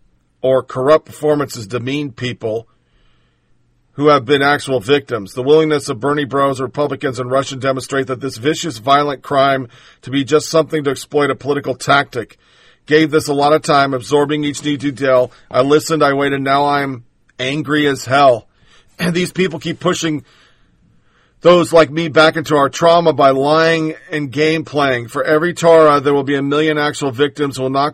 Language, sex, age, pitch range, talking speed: English, male, 40-59, 135-155 Hz, 180 wpm